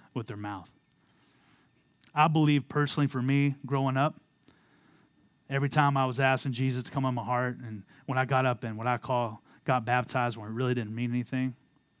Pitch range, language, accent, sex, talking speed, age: 120-155 Hz, English, American, male, 190 wpm, 30-49